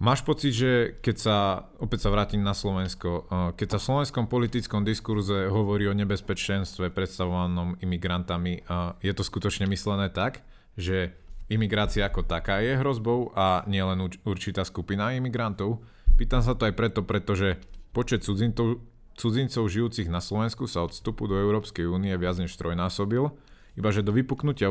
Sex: male